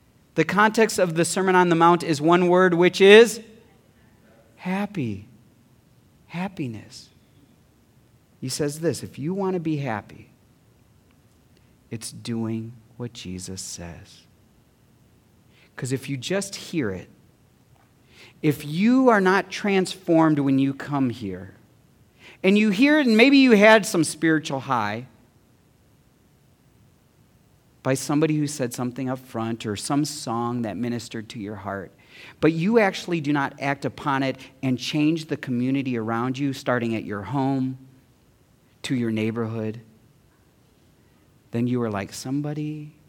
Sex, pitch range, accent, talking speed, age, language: male, 115-160 Hz, American, 135 wpm, 40-59, English